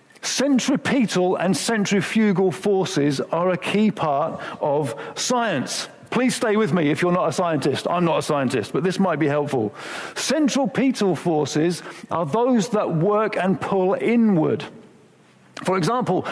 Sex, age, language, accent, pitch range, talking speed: male, 50-69, English, British, 170-215 Hz, 150 wpm